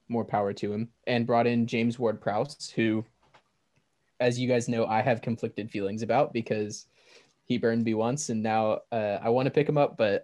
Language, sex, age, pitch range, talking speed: English, male, 20-39, 105-125 Hz, 200 wpm